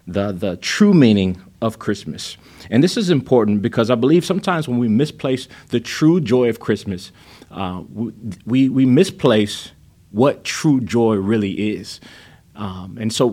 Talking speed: 160 wpm